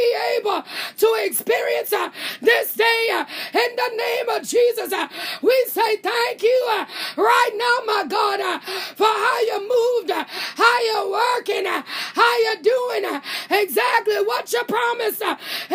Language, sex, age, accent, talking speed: English, female, 30-49, American, 155 wpm